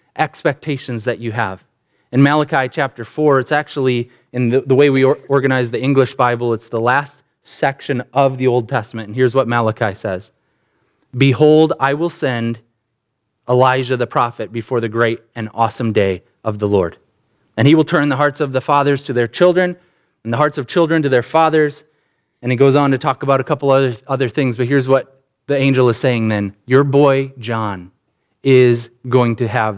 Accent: American